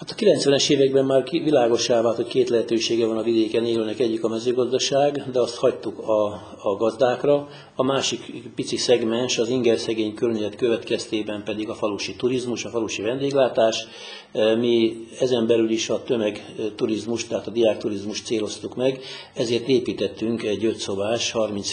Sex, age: male, 60-79